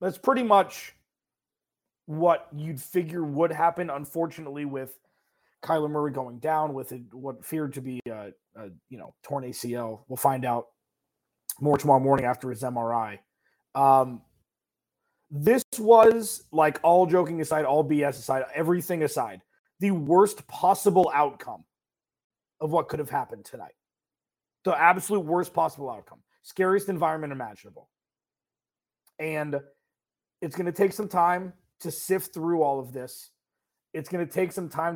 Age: 30-49